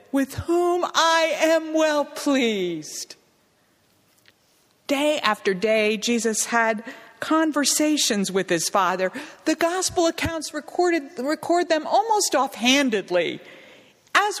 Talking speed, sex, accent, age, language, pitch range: 100 wpm, female, American, 50-69, English, 210-305 Hz